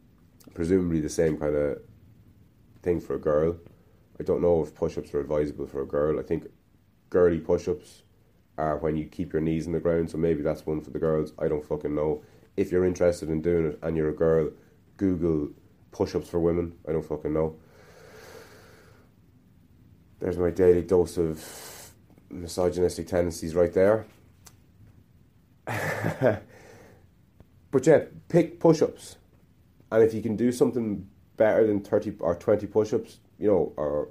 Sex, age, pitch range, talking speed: male, 30-49, 85-105 Hz, 155 wpm